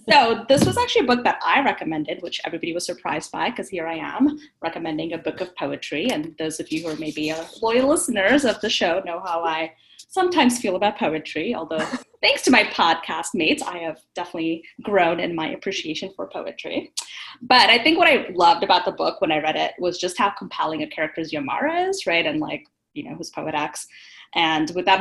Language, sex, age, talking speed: English, female, 10-29, 210 wpm